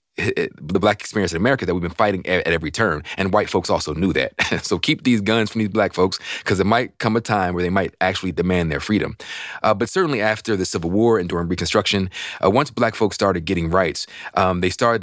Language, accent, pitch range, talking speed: English, American, 90-115 Hz, 240 wpm